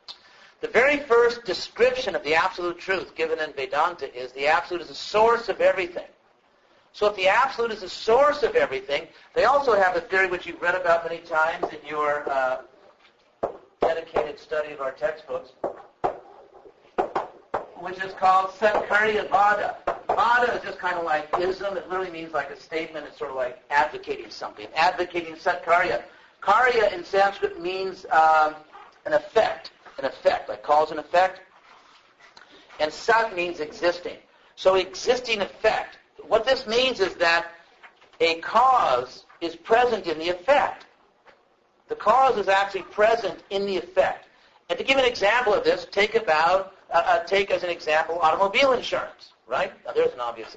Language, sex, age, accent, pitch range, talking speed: English, male, 50-69, American, 165-225 Hz, 160 wpm